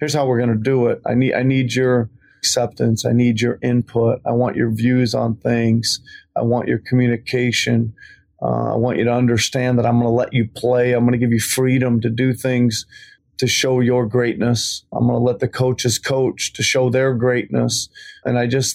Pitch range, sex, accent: 120-130 Hz, male, American